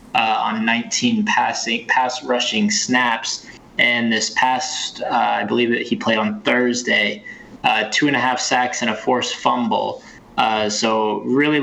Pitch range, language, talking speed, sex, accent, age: 110-125 Hz, English, 160 wpm, male, American, 20-39